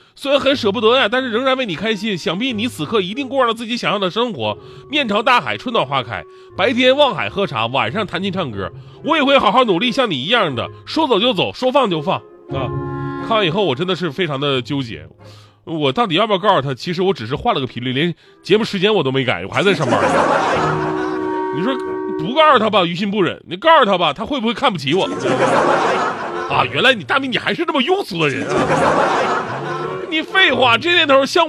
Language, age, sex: Chinese, 30-49, male